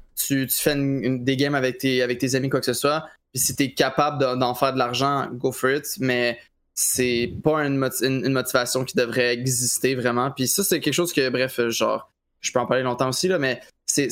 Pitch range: 125-145 Hz